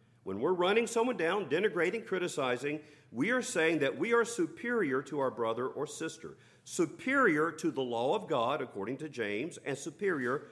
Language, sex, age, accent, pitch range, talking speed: English, male, 50-69, American, 145-220 Hz, 170 wpm